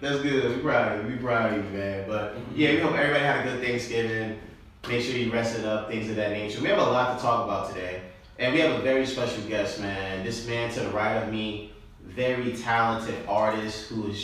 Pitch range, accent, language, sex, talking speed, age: 100-120 Hz, American, English, male, 245 wpm, 20-39